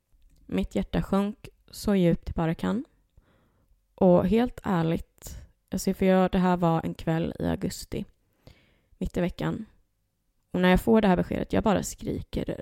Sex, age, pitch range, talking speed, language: female, 20-39, 150-205 Hz, 160 wpm, Swedish